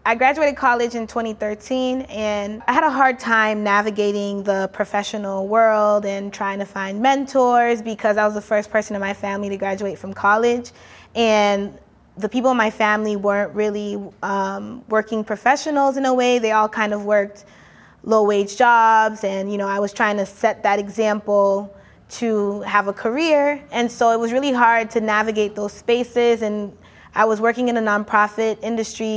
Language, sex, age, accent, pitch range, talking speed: English, female, 20-39, American, 205-235 Hz, 175 wpm